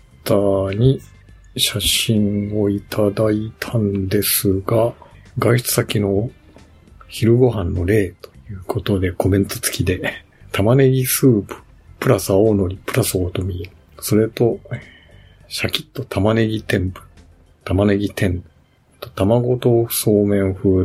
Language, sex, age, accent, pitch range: Japanese, male, 50-69, native, 95-115 Hz